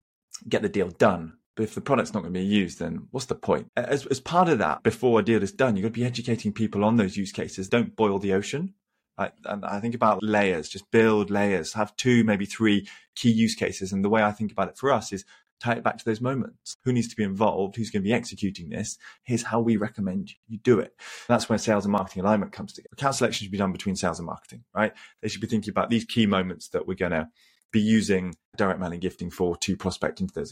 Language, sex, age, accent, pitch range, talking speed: Hebrew, male, 20-39, British, 95-115 Hz, 270 wpm